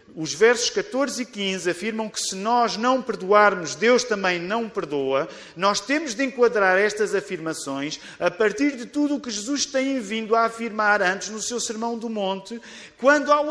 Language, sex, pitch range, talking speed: Portuguese, male, 160-230 Hz, 180 wpm